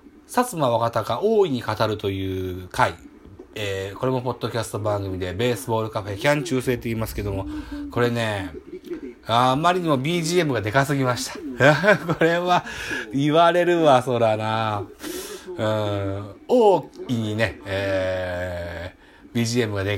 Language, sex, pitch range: Japanese, male, 100-155 Hz